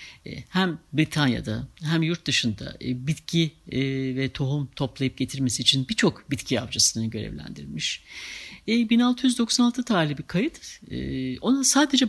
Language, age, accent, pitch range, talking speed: Turkish, 60-79, native, 120-170 Hz, 105 wpm